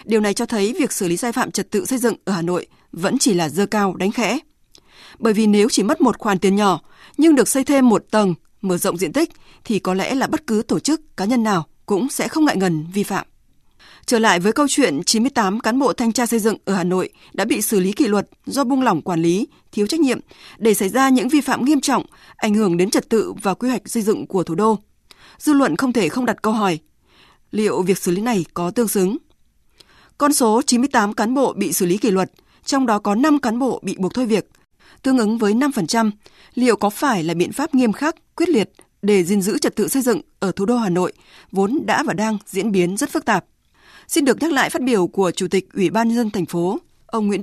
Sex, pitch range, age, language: female, 195-260 Hz, 20-39, Vietnamese